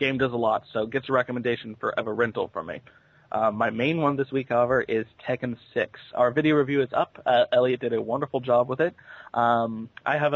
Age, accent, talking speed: 20-39, American, 225 wpm